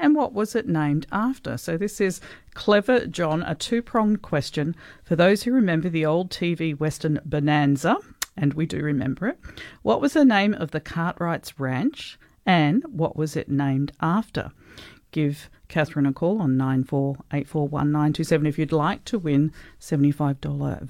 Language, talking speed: English, 155 wpm